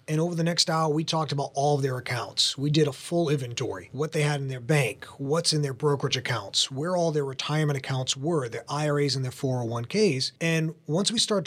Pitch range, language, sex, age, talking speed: 140-180 Hz, English, male, 30-49, 225 wpm